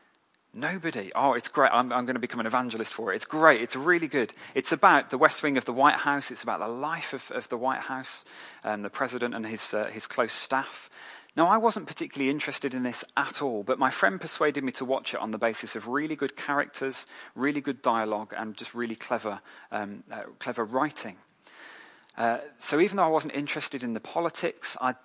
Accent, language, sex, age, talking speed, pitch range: British, English, male, 30-49, 220 wpm, 115-150 Hz